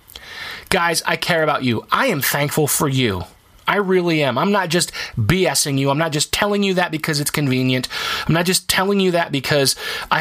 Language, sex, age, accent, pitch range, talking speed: English, male, 30-49, American, 125-175 Hz, 205 wpm